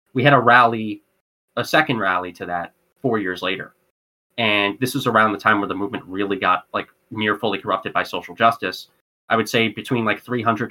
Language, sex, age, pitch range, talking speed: English, male, 20-39, 115-145 Hz, 200 wpm